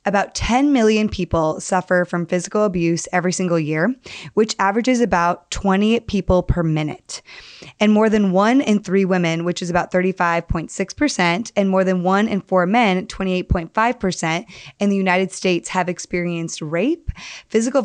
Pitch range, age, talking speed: 175-210 Hz, 20-39, 150 wpm